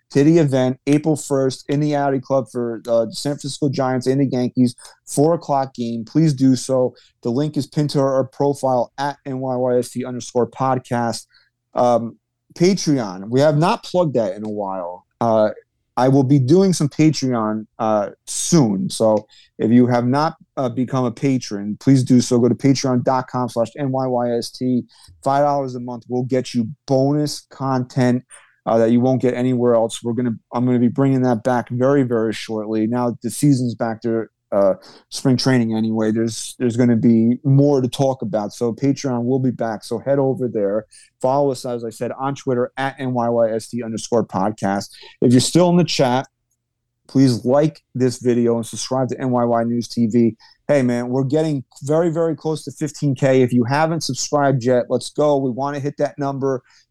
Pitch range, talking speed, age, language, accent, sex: 120-140 Hz, 180 wpm, 30-49, English, American, male